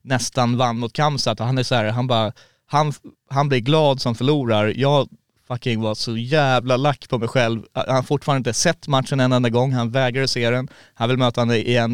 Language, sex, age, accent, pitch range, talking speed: Swedish, male, 20-39, native, 110-125 Hz, 215 wpm